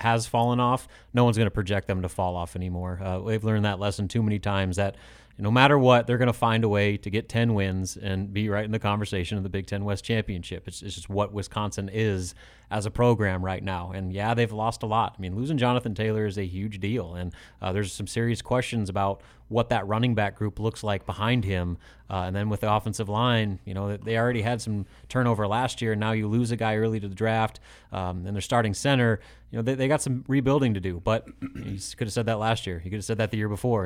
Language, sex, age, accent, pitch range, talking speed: English, male, 30-49, American, 100-115 Hz, 255 wpm